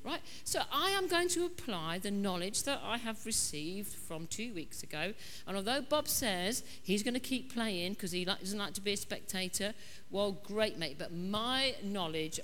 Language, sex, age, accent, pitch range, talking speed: English, female, 50-69, British, 170-240 Hz, 195 wpm